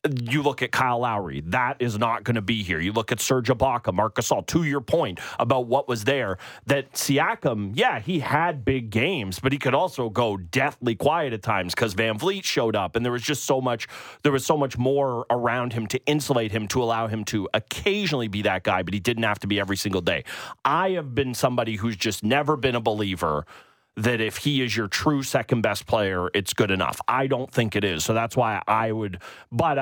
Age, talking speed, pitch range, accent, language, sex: 30-49, 225 wpm, 105-130 Hz, American, English, male